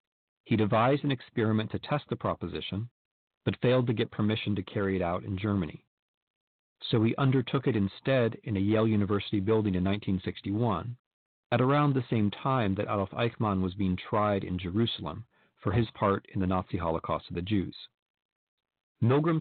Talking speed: 170 wpm